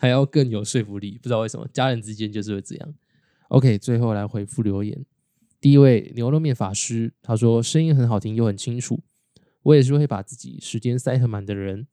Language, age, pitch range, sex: Chinese, 10-29, 110-135 Hz, male